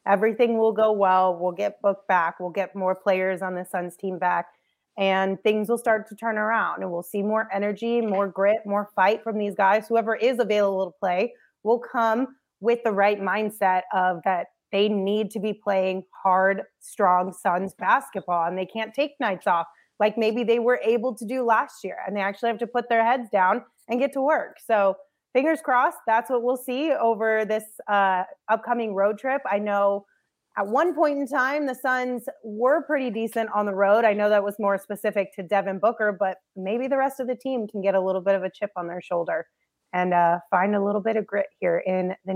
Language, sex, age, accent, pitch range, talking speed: English, female, 30-49, American, 190-235 Hz, 215 wpm